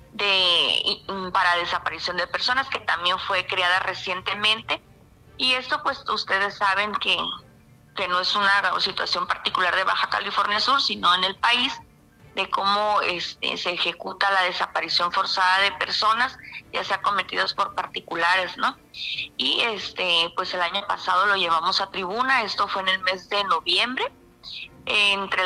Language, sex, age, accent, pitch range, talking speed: Spanish, female, 30-49, Mexican, 180-210 Hz, 150 wpm